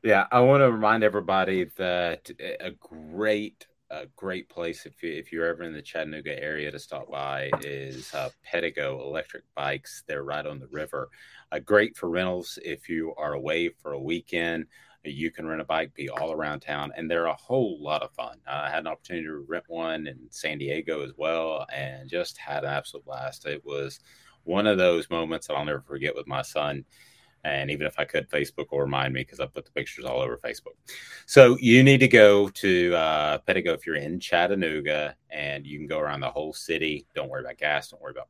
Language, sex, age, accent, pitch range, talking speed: English, male, 30-49, American, 70-95 Hz, 210 wpm